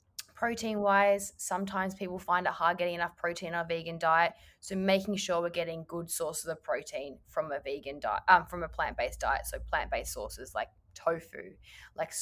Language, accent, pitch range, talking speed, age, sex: English, Australian, 165-215 Hz, 180 wpm, 20-39, female